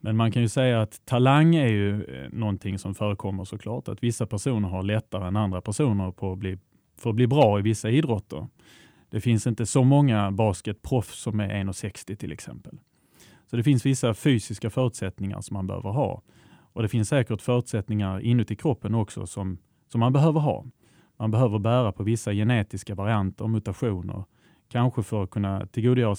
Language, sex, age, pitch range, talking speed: Swedish, male, 30-49, 105-125 Hz, 180 wpm